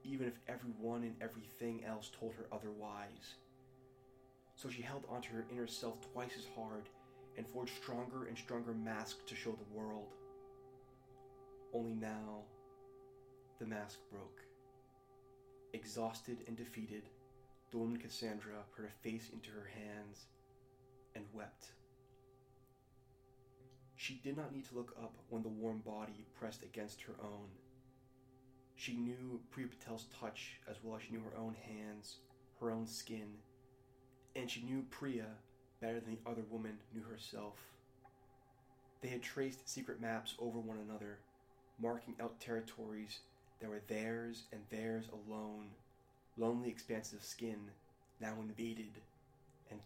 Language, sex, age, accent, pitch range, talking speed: English, male, 30-49, American, 110-130 Hz, 135 wpm